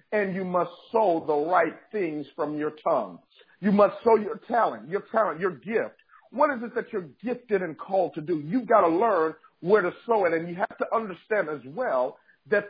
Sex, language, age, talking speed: male, English, 50-69, 215 wpm